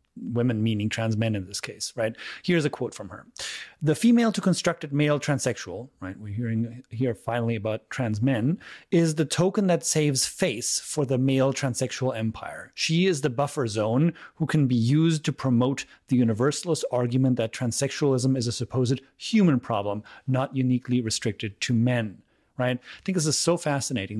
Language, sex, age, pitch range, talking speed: English, male, 30-49, 120-150 Hz, 175 wpm